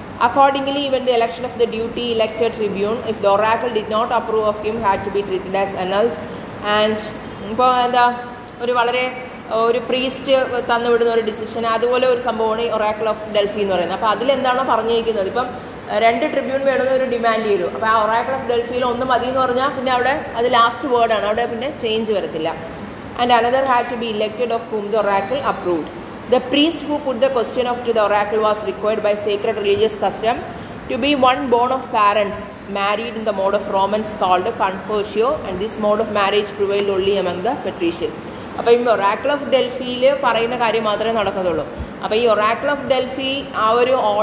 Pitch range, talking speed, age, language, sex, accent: 210-250 Hz, 175 wpm, 30-49, English, female, Indian